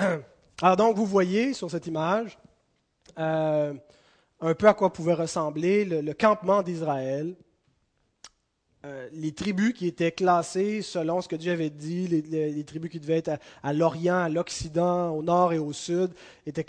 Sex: male